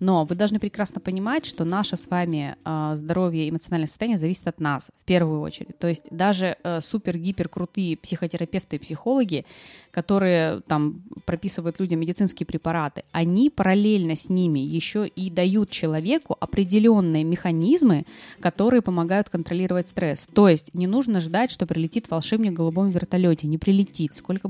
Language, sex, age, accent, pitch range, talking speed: Russian, female, 20-39, native, 165-200 Hz, 145 wpm